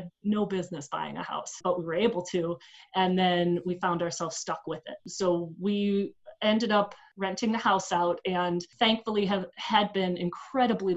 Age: 30-49